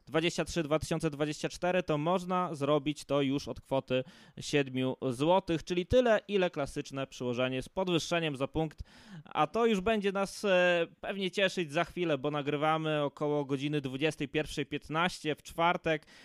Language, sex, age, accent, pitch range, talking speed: Polish, male, 20-39, native, 135-175 Hz, 135 wpm